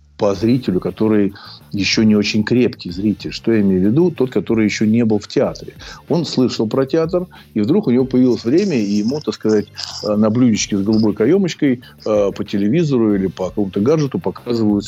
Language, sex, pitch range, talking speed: Russian, male, 105-130 Hz, 185 wpm